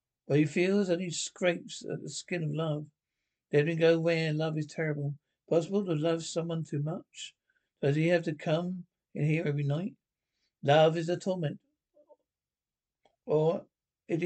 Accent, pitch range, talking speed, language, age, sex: British, 150-175 Hz, 170 wpm, English, 60-79, male